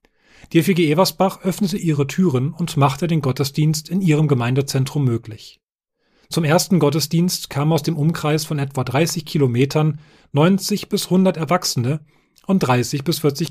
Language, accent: German, German